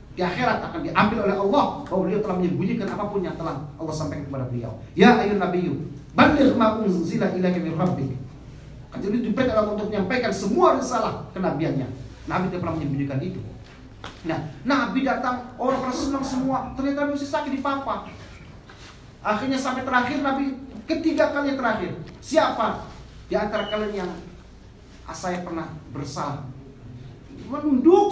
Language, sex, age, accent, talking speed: Indonesian, male, 40-59, native, 140 wpm